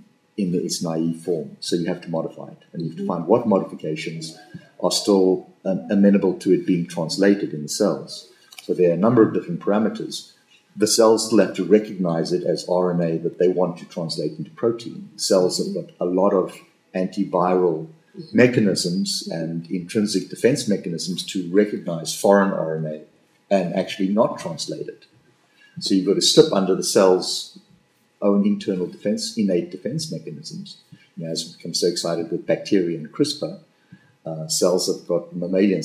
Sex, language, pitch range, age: male, English, 85-115 Hz, 50-69